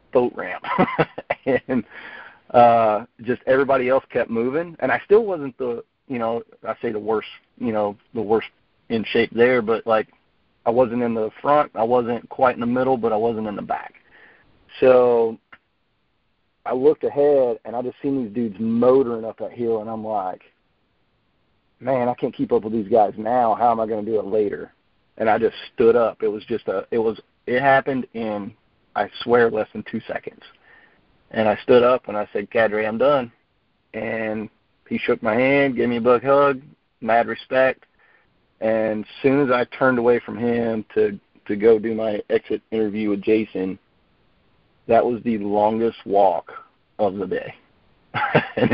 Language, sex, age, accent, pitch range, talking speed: English, male, 40-59, American, 110-130 Hz, 185 wpm